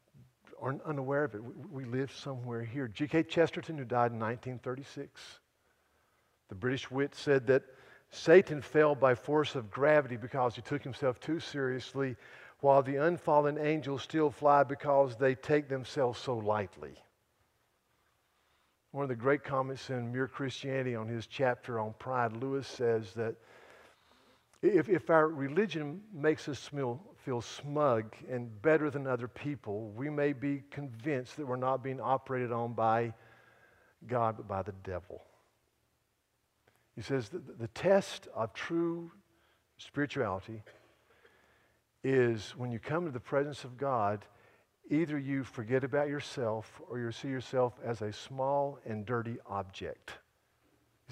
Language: English